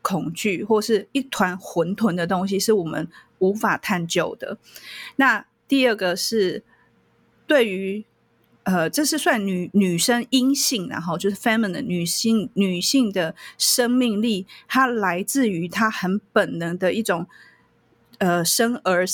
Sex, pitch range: female, 180-230 Hz